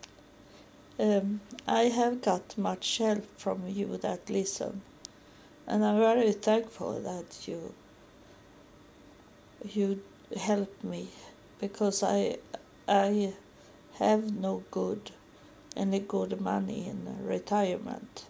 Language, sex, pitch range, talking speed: English, female, 195-225 Hz, 100 wpm